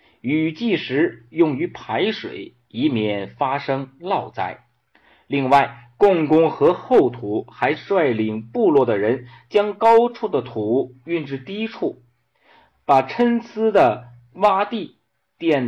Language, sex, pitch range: Chinese, male, 120-185 Hz